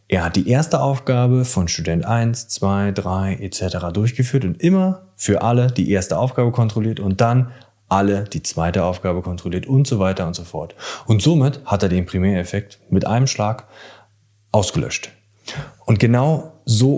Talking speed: 165 wpm